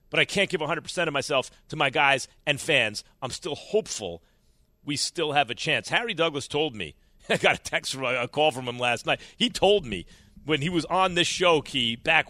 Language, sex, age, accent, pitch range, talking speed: English, male, 40-59, American, 145-195 Hz, 225 wpm